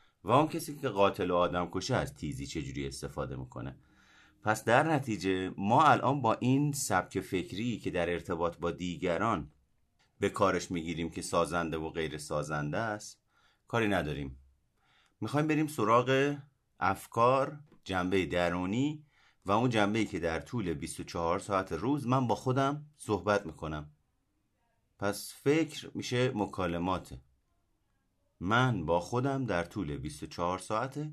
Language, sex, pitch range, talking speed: Persian, male, 85-130 Hz, 135 wpm